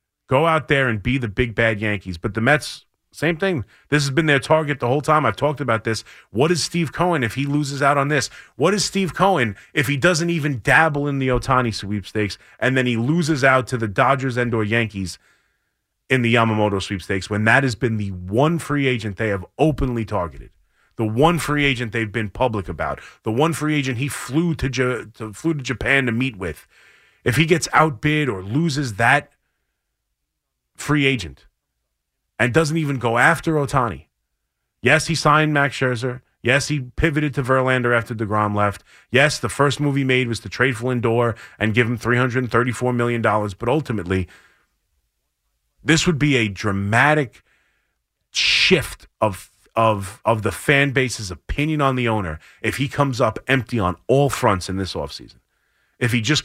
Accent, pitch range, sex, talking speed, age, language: American, 110-145 Hz, male, 185 wpm, 30-49, English